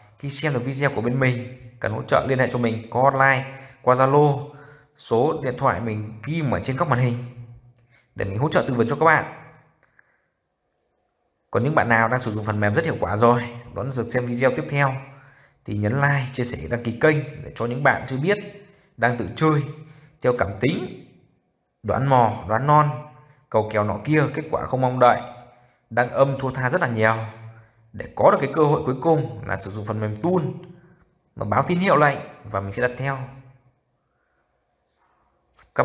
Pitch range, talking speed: 115-145 Hz, 205 wpm